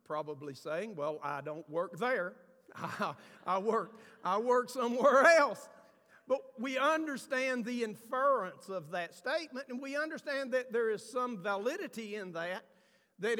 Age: 50-69